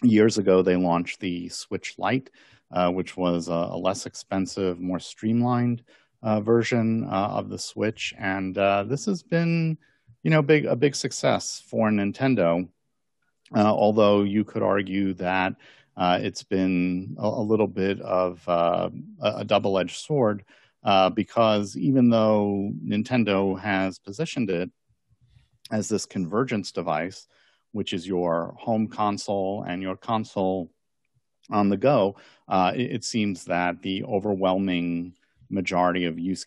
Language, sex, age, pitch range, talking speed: English, male, 50-69, 90-115 Hz, 140 wpm